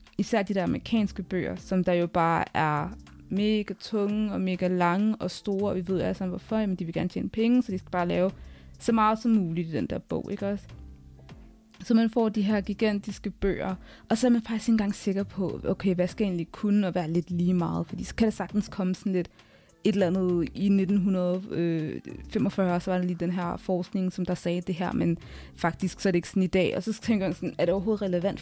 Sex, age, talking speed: female, 20-39, 245 wpm